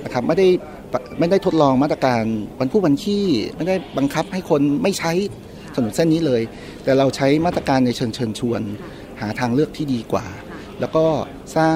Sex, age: male, 30-49